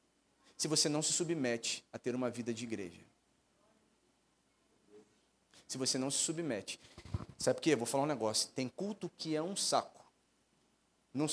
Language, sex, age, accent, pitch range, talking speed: Portuguese, male, 40-59, Brazilian, 155-225 Hz, 160 wpm